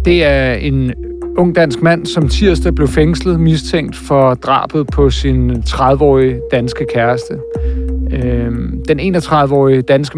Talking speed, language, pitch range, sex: 125 wpm, Danish, 125-150 Hz, male